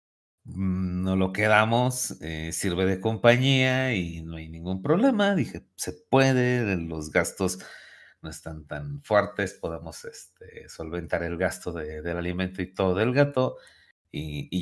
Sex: male